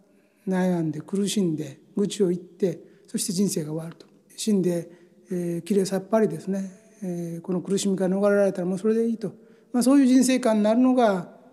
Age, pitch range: 60-79, 195-245 Hz